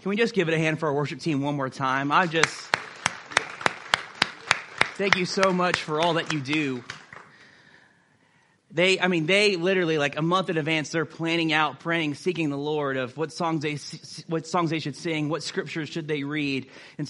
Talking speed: 200 wpm